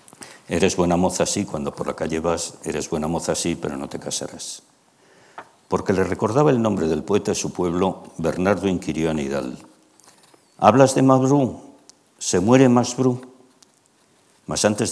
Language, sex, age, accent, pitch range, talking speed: Spanish, male, 60-79, Spanish, 85-105 Hz, 155 wpm